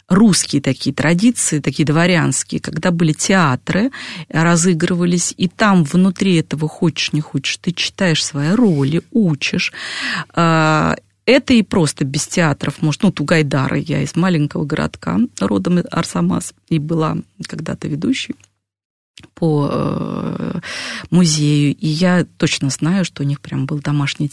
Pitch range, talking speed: 150-195 Hz, 130 wpm